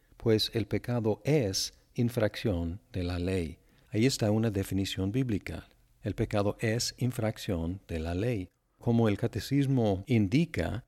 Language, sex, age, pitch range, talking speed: Spanish, male, 50-69, 95-115 Hz, 130 wpm